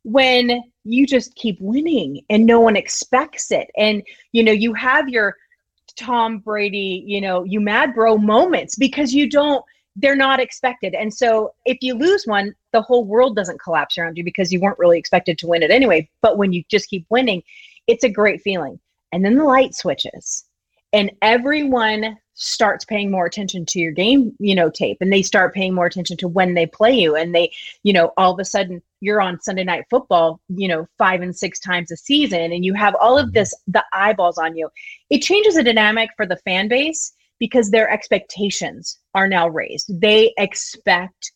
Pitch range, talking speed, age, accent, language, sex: 185-245 Hz, 200 wpm, 30-49, American, English, female